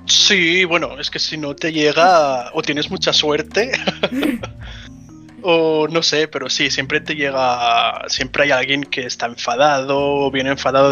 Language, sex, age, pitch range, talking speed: Spanish, male, 20-39, 125-160 Hz, 160 wpm